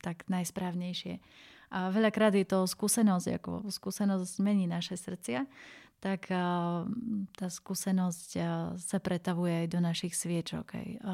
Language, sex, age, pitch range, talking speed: Slovak, female, 30-49, 180-205 Hz, 115 wpm